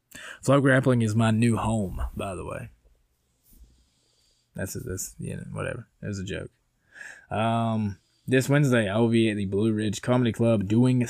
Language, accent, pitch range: English, American, 100-120 Hz